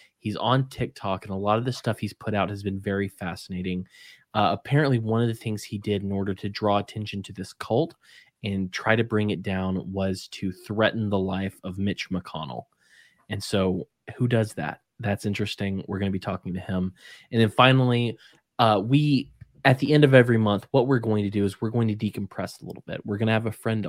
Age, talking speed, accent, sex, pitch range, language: 20-39, 225 wpm, American, male, 95-115 Hz, English